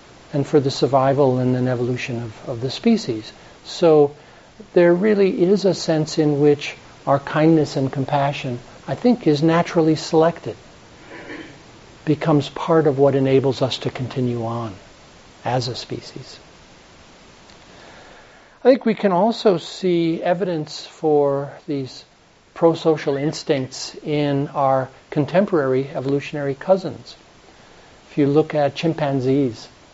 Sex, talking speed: male, 120 wpm